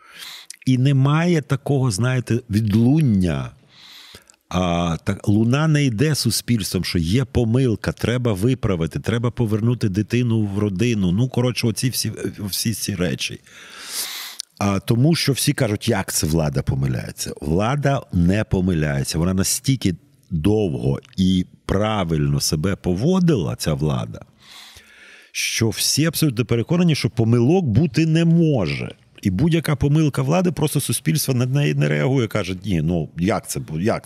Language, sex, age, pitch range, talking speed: Ukrainian, male, 50-69, 95-135 Hz, 125 wpm